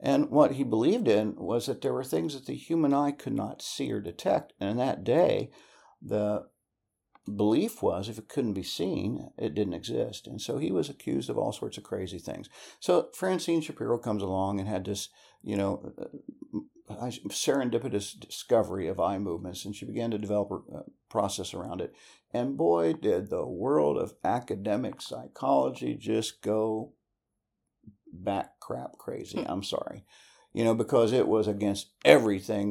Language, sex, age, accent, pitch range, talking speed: English, male, 60-79, American, 100-125 Hz, 165 wpm